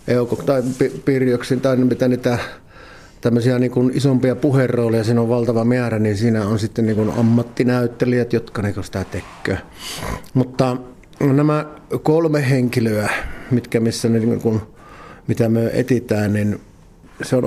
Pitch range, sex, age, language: 115-140 Hz, male, 50-69, Finnish